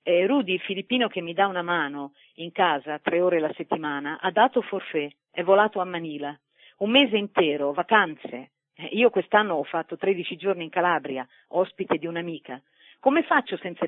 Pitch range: 165-215 Hz